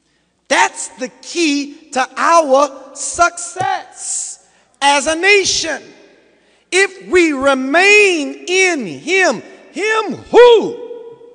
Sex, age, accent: male, 40-59, American